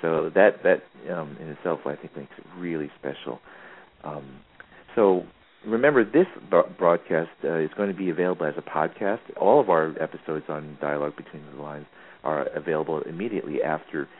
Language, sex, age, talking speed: English, male, 40-59, 170 wpm